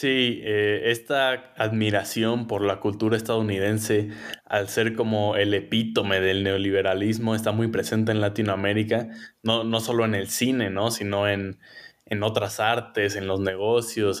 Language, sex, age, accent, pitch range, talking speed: Spanish, male, 20-39, Mexican, 100-115 Hz, 150 wpm